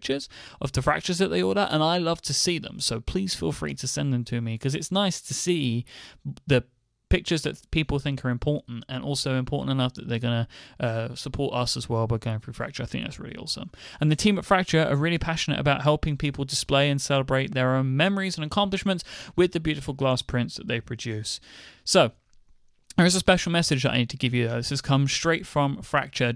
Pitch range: 120-160 Hz